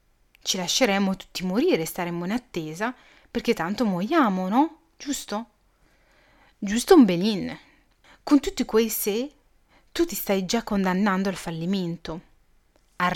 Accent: native